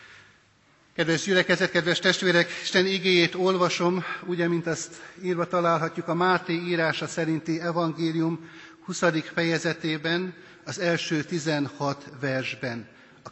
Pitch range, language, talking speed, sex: 155-185 Hz, Hungarian, 110 wpm, male